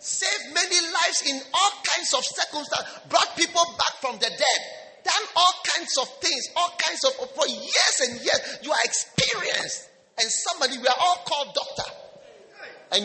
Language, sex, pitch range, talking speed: English, male, 195-290 Hz, 170 wpm